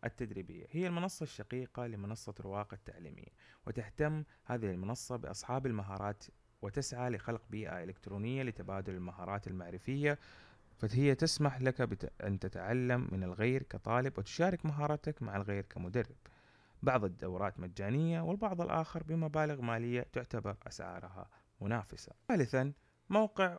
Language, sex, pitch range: Arabic, male, 100-140 Hz